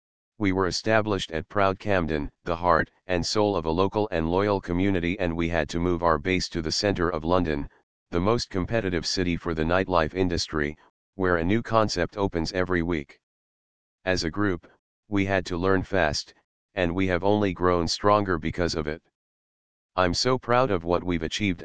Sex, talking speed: male, 185 wpm